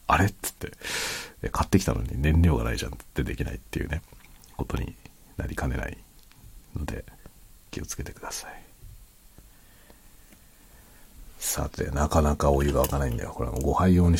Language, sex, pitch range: Japanese, male, 75-100 Hz